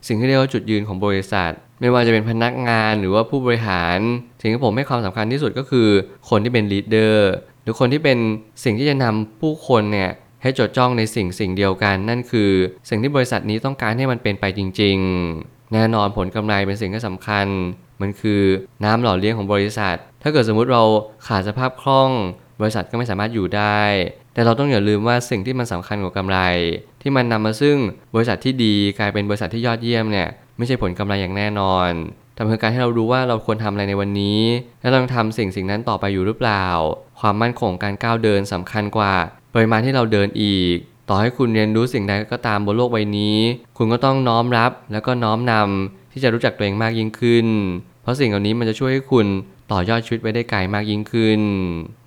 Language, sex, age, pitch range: Thai, male, 20-39, 100-120 Hz